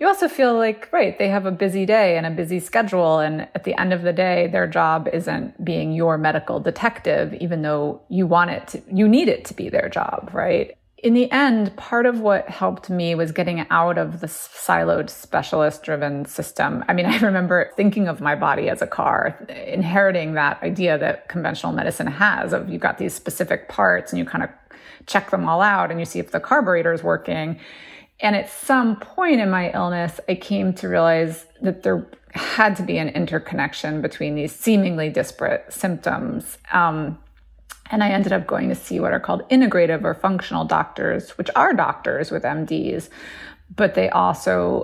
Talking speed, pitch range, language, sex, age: 190 wpm, 165-210 Hz, English, female, 30-49